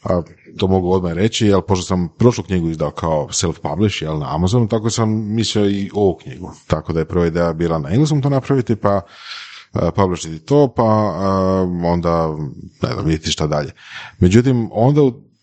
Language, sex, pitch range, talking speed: Croatian, male, 85-120 Hz, 180 wpm